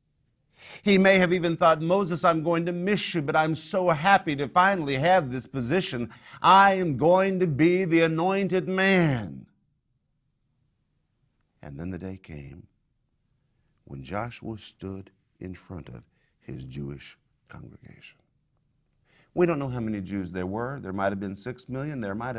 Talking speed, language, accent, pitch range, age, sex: 155 wpm, English, American, 115-160 Hz, 50-69, male